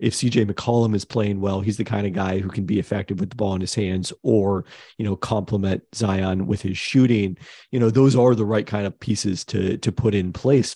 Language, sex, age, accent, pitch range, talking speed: English, male, 40-59, American, 100-115 Hz, 240 wpm